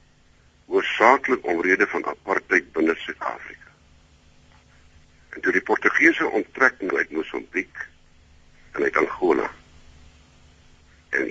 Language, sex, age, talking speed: Dutch, male, 60-79, 95 wpm